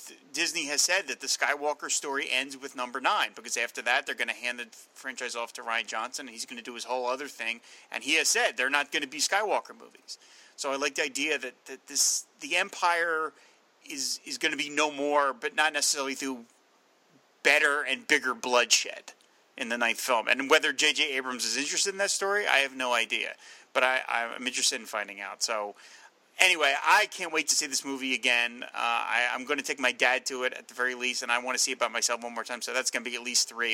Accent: American